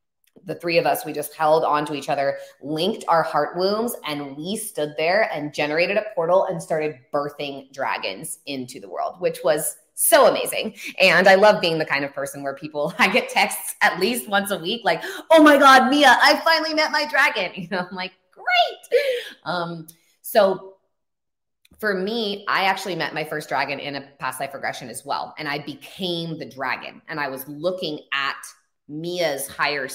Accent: American